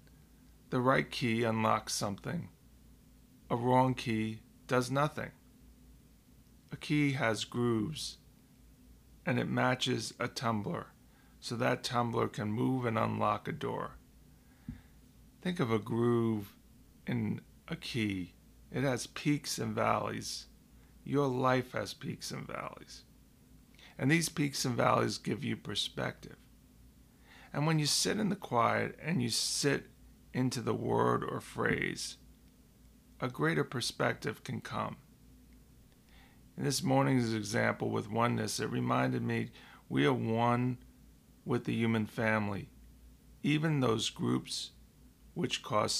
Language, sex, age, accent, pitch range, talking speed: English, male, 40-59, American, 105-125 Hz, 125 wpm